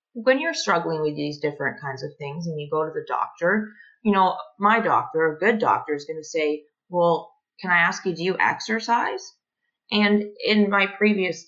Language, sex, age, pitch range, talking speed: English, female, 30-49, 155-215 Hz, 200 wpm